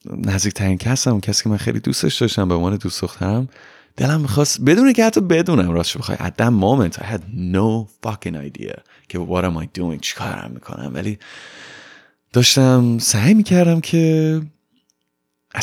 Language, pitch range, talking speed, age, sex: Persian, 100-145 Hz, 145 wpm, 30-49, male